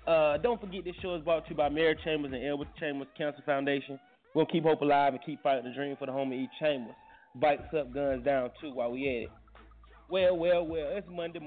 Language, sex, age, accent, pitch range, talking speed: English, male, 20-39, American, 135-160 Hz, 240 wpm